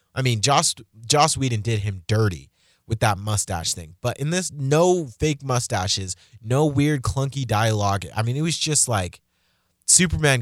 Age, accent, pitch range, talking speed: 20-39, American, 95-125 Hz, 165 wpm